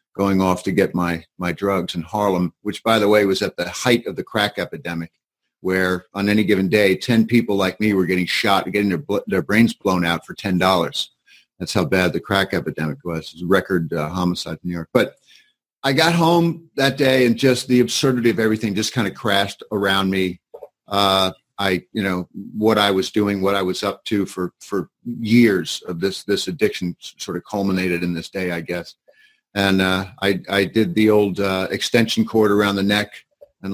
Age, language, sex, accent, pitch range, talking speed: 50-69, English, male, American, 95-120 Hz, 205 wpm